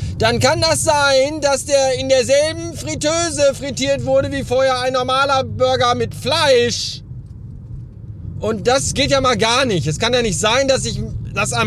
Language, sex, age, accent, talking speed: German, male, 40-59, German, 170 wpm